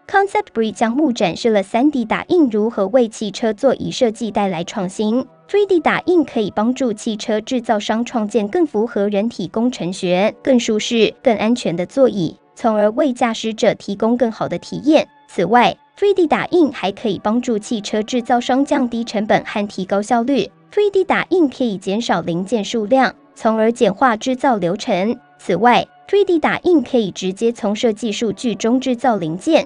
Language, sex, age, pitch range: Chinese, male, 10-29, 210-260 Hz